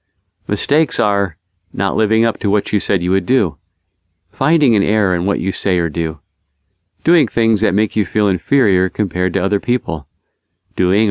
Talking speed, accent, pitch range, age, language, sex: 180 wpm, American, 90-110 Hz, 40-59, English, male